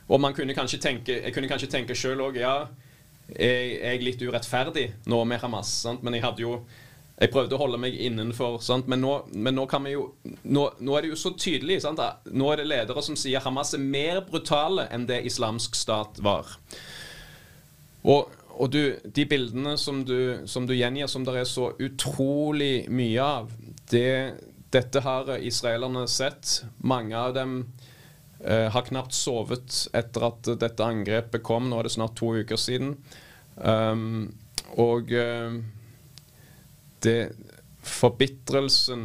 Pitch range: 115-135 Hz